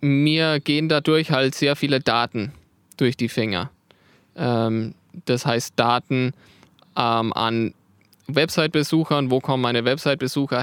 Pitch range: 125-150 Hz